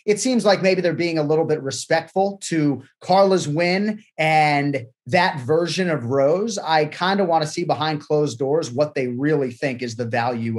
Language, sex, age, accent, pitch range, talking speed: English, male, 30-49, American, 130-160 Hz, 195 wpm